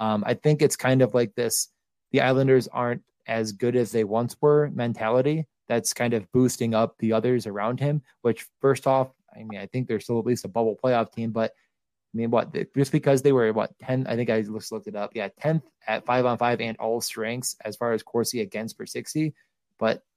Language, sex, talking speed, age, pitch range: English, male, 225 wpm, 20-39, 115-140 Hz